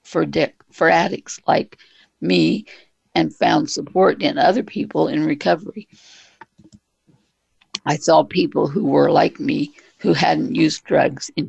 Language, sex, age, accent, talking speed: English, female, 60-79, American, 125 wpm